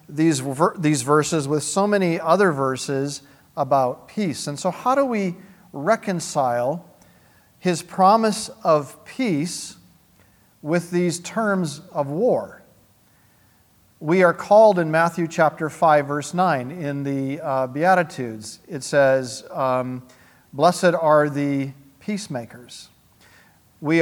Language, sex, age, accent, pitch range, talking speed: English, male, 50-69, American, 145-185 Hz, 115 wpm